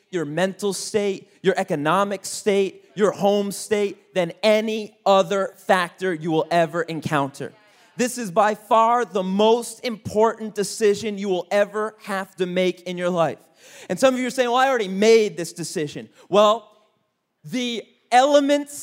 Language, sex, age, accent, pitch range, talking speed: English, male, 30-49, American, 200-245 Hz, 155 wpm